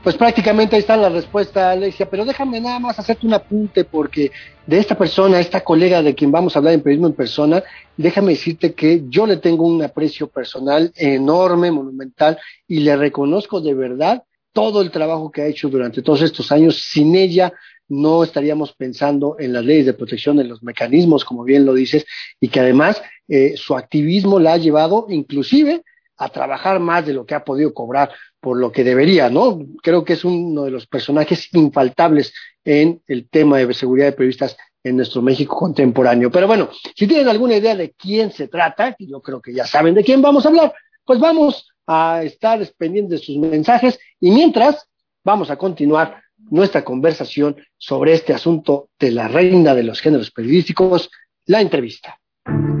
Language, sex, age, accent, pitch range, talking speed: Spanish, male, 40-59, Mexican, 140-190 Hz, 185 wpm